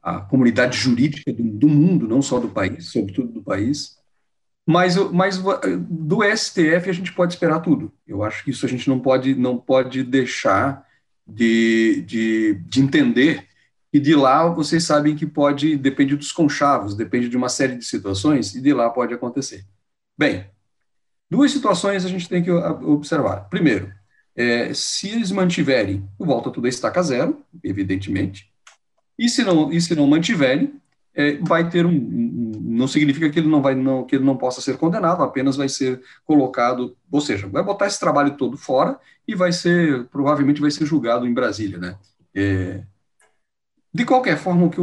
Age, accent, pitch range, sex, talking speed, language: 40-59, Brazilian, 120-170 Hz, male, 165 wpm, Portuguese